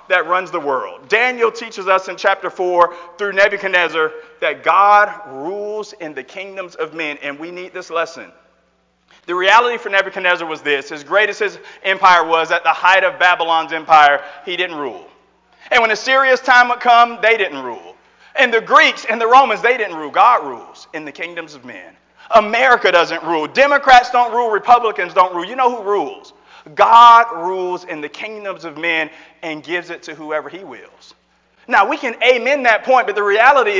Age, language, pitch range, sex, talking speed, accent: 40-59, English, 180-245 Hz, male, 190 wpm, American